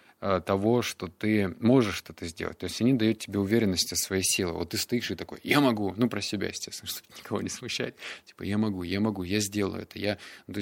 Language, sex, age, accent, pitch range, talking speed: Russian, male, 20-39, native, 95-115 Hz, 225 wpm